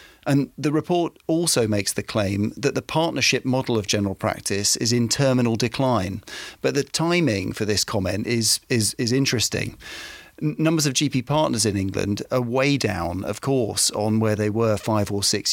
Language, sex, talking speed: English, male, 180 wpm